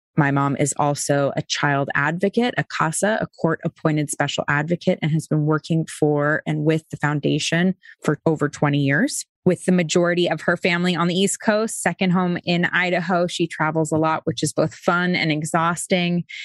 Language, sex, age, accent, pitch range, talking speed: English, female, 20-39, American, 155-180 Hz, 180 wpm